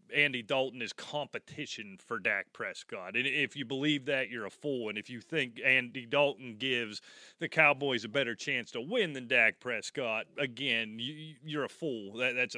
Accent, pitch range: American, 130-180 Hz